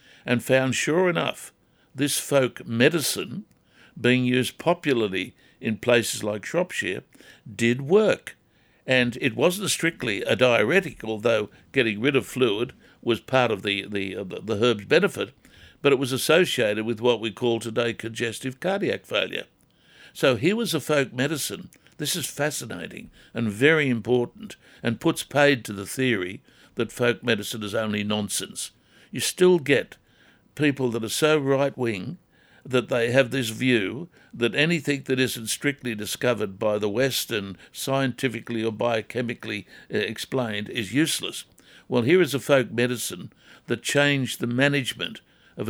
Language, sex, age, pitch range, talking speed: English, male, 60-79, 110-140 Hz, 145 wpm